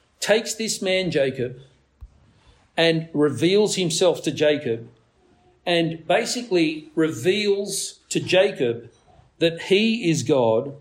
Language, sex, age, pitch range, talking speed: English, male, 50-69, 140-195 Hz, 100 wpm